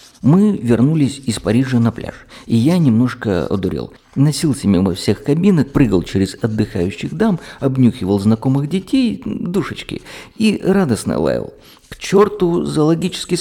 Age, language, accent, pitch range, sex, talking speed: 50-69, Russian, native, 100-135 Hz, male, 125 wpm